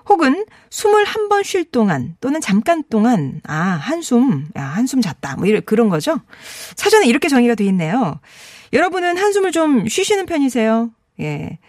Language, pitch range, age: Korean, 200-315 Hz, 40-59